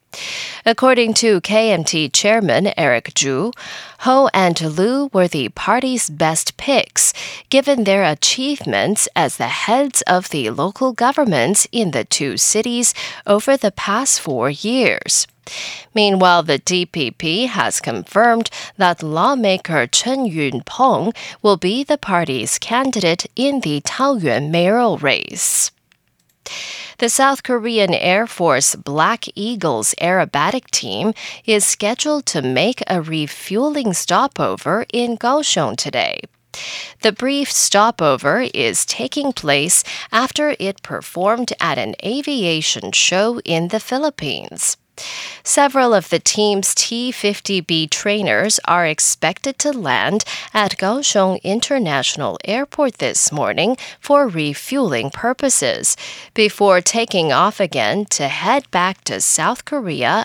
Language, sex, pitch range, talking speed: English, female, 175-255 Hz, 115 wpm